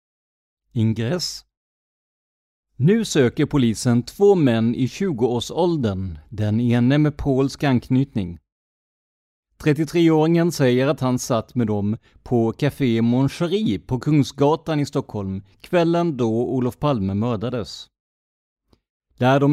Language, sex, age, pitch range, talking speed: Swedish, male, 30-49, 115-150 Hz, 110 wpm